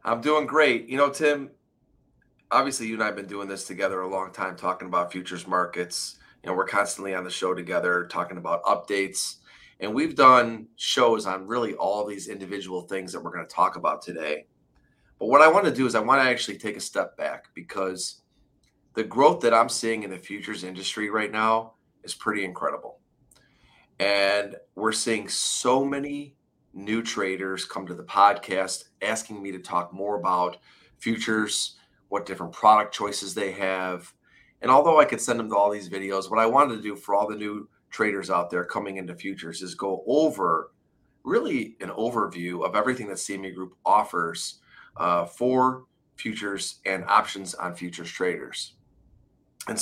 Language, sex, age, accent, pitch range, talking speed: English, male, 30-49, American, 95-115 Hz, 180 wpm